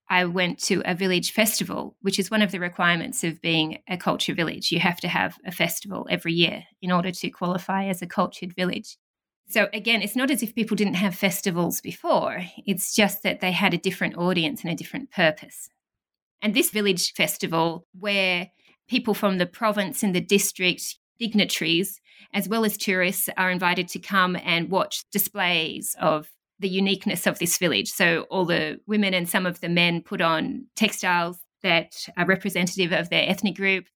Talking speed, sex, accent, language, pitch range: 185 wpm, female, Australian, English, 180-210 Hz